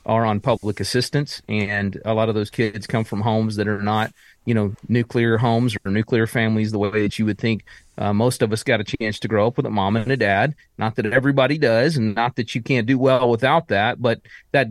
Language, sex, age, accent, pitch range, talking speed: English, male, 40-59, American, 105-125 Hz, 245 wpm